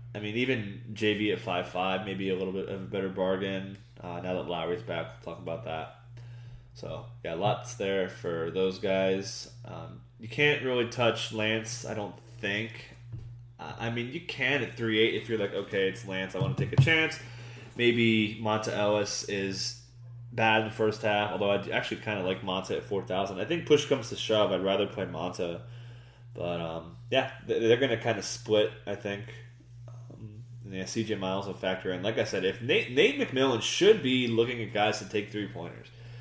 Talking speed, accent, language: 195 wpm, American, English